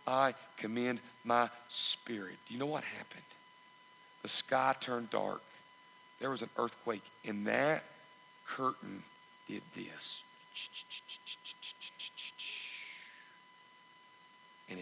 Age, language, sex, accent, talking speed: 50-69, English, male, American, 95 wpm